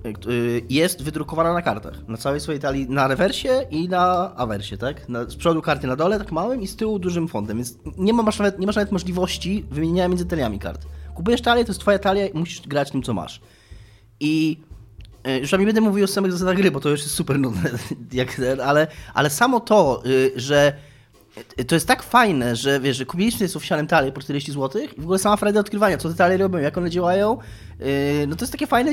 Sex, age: male, 20-39